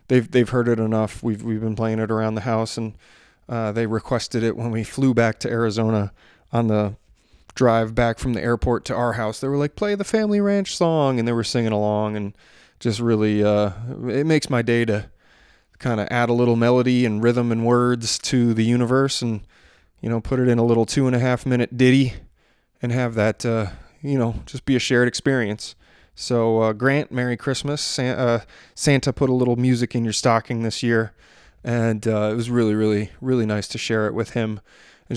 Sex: male